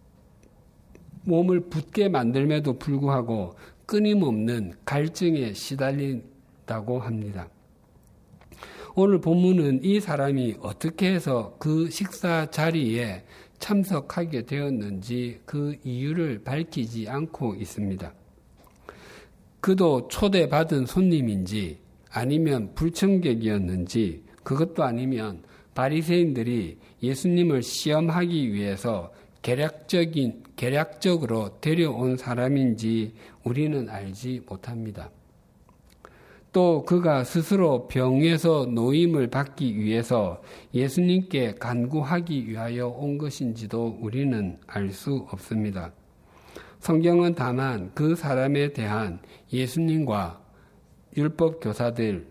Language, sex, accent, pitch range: Korean, male, native, 110-160 Hz